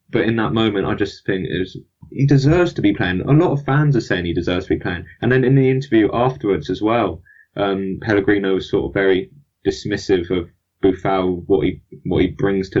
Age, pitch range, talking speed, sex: 20-39, 95-110 Hz, 225 wpm, male